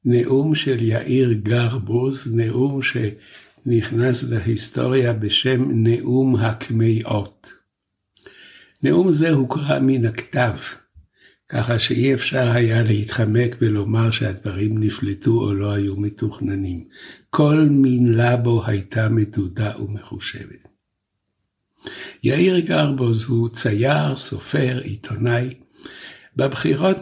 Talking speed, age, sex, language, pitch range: 90 wpm, 60-79, male, Hebrew, 110-130 Hz